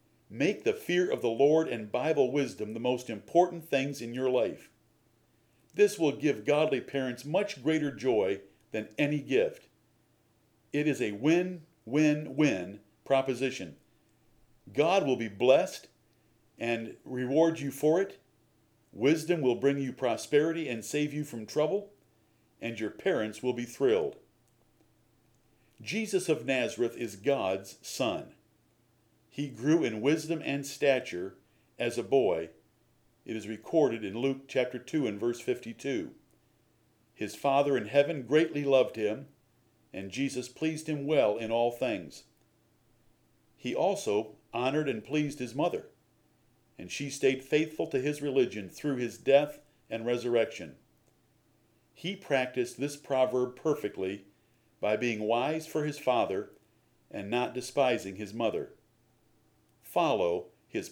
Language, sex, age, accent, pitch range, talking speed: English, male, 50-69, American, 110-145 Hz, 130 wpm